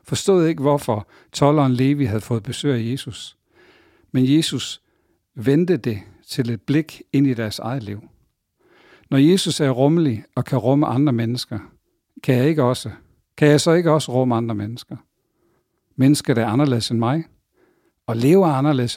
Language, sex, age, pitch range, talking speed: English, male, 60-79, 115-145 Hz, 165 wpm